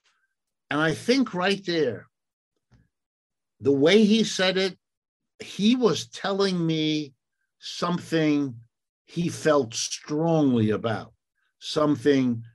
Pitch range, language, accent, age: 125-175 Hz, English, American, 60-79